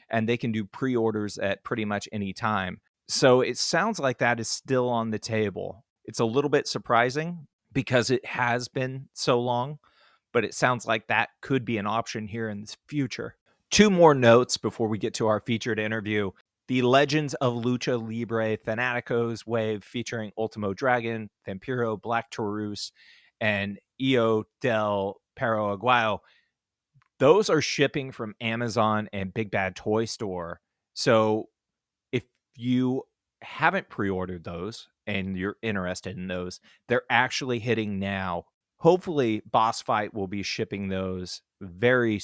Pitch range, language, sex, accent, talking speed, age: 100-120 Hz, English, male, American, 150 wpm, 30-49